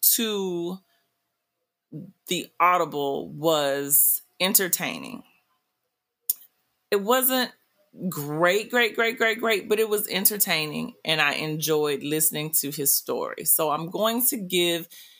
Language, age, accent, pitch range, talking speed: English, 30-49, American, 160-210 Hz, 110 wpm